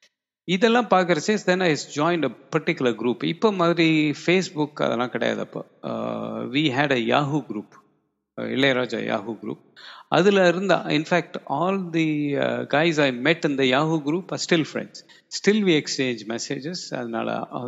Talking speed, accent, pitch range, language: 155 wpm, native, 130-170 Hz, Tamil